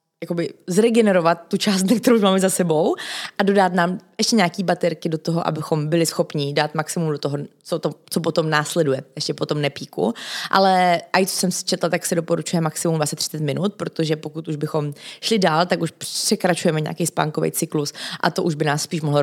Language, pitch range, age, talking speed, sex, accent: Czech, 150-185 Hz, 20-39, 195 wpm, female, native